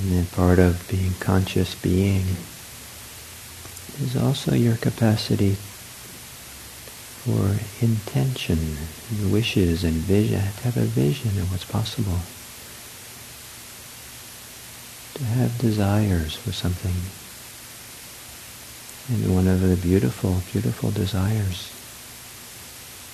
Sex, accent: male, American